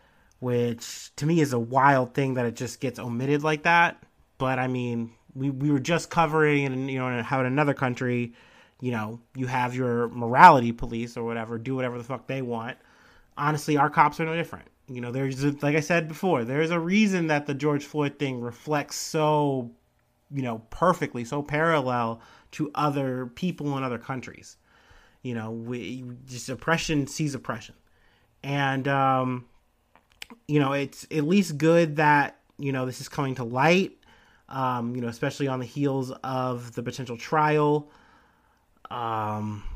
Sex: male